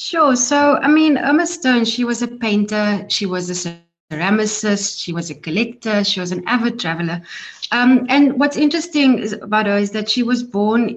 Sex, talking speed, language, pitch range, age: female, 190 wpm, English, 185-225 Hz, 30-49